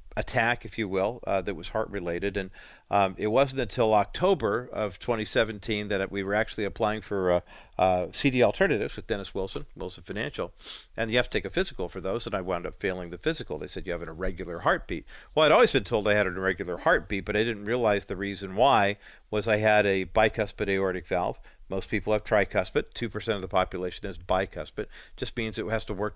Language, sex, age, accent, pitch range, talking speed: English, male, 50-69, American, 95-115 Hz, 220 wpm